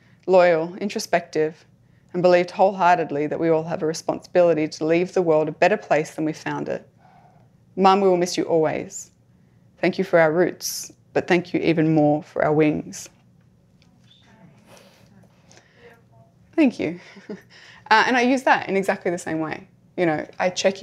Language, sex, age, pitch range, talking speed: English, female, 20-39, 155-180 Hz, 165 wpm